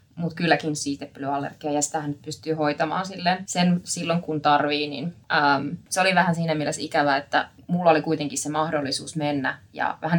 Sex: female